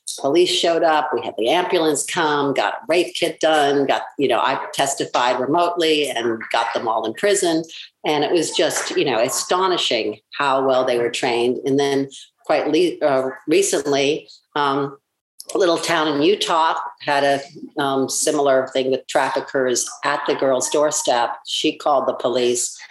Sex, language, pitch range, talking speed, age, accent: female, English, 130-155 Hz, 165 wpm, 50-69, American